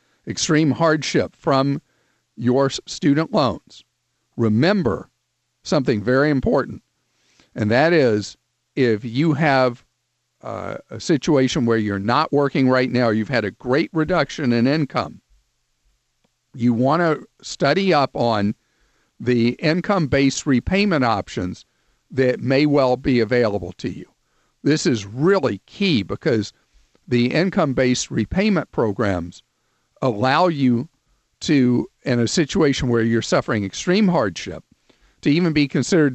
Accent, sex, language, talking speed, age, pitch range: American, male, English, 120 wpm, 50-69, 120-155 Hz